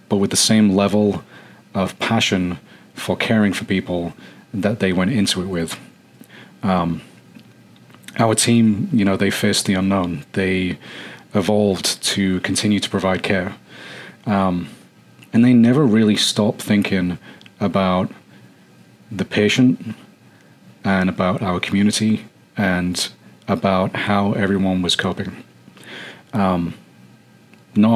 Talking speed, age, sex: 120 wpm, 30-49, male